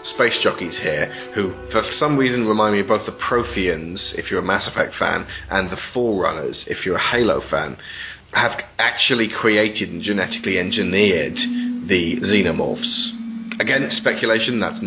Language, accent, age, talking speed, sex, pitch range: English, British, 30-49, 155 wpm, male, 95-130 Hz